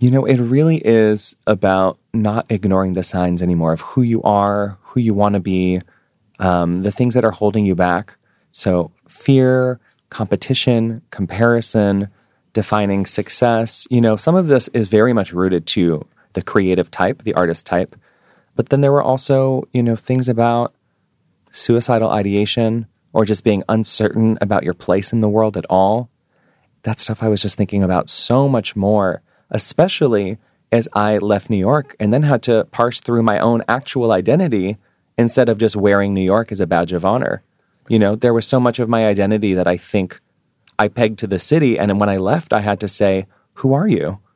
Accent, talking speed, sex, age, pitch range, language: American, 185 wpm, male, 30-49, 95-120 Hz, English